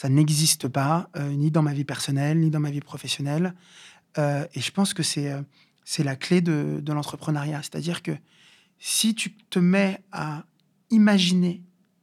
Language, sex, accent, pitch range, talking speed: French, male, French, 145-190 Hz, 175 wpm